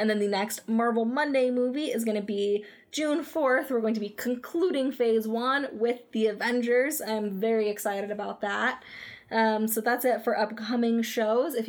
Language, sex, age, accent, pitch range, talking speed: English, female, 10-29, American, 215-250 Hz, 185 wpm